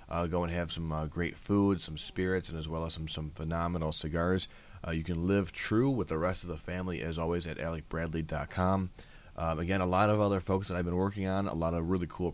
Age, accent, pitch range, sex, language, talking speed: 20-39, American, 85-100 Hz, male, English, 240 wpm